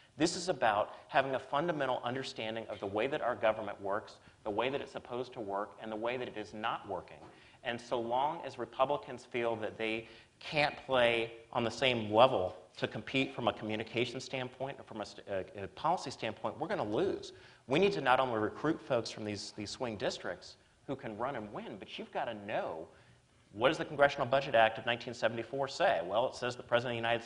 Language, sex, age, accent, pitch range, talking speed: English, male, 30-49, American, 110-135 Hz, 220 wpm